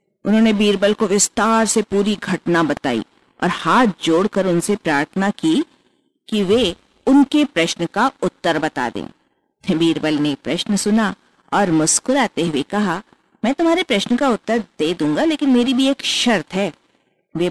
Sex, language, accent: female, Hindi, native